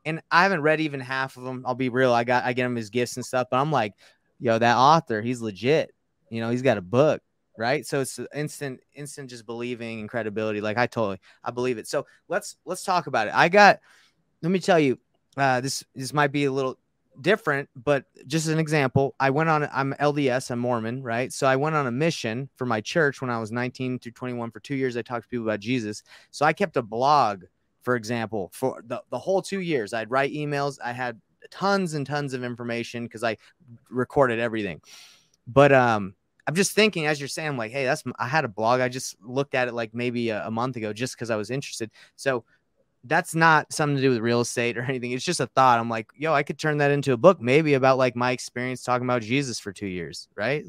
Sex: male